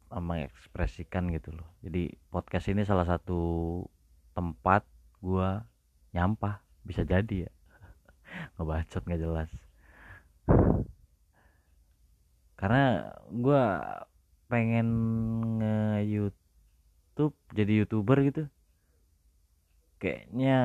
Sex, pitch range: male, 75-100 Hz